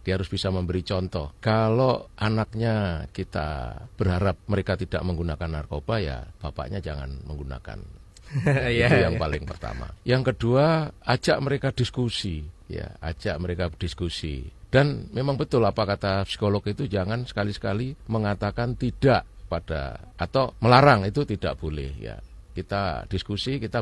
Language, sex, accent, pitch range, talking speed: Indonesian, male, native, 85-115 Hz, 130 wpm